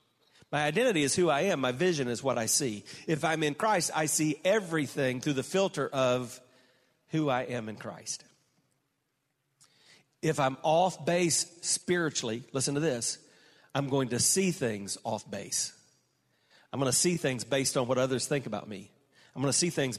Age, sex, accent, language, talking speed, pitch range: 40-59, male, American, English, 180 wpm, 130-180 Hz